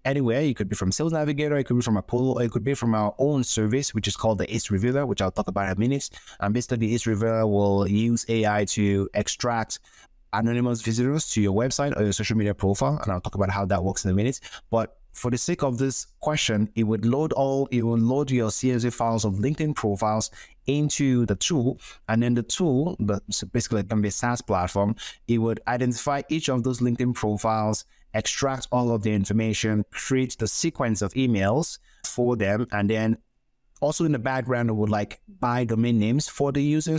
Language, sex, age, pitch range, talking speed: English, male, 20-39, 100-125 Hz, 215 wpm